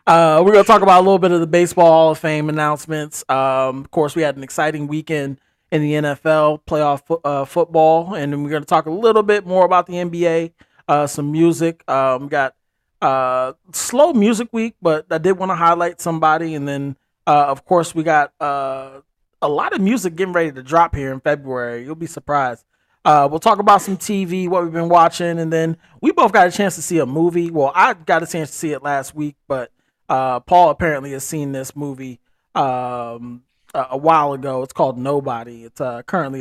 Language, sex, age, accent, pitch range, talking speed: English, male, 20-39, American, 135-170 Hz, 215 wpm